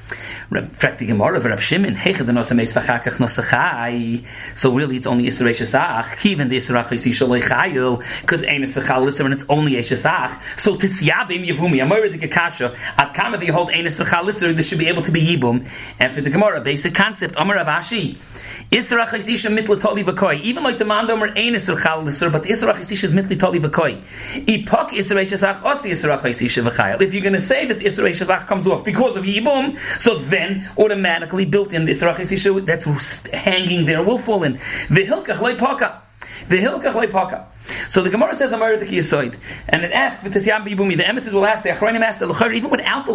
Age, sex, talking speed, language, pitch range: 30-49, male, 170 wpm, English, 135-205 Hz